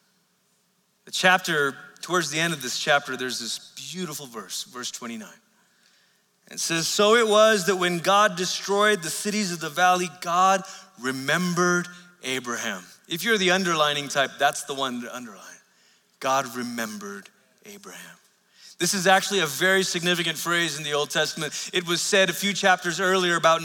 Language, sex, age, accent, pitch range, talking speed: English, male, 30-49, American, 175-230 Hz, 160 wpm